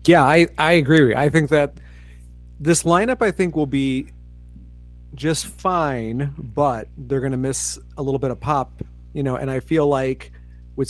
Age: 40-59